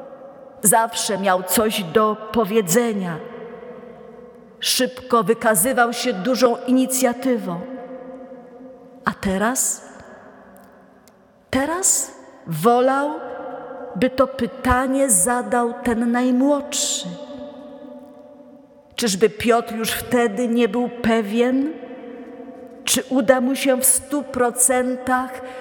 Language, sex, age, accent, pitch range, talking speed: Polish, female, 40-59, native, 235-270 Hz, 80 wpm